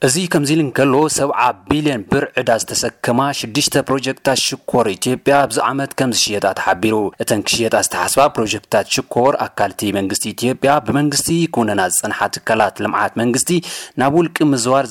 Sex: male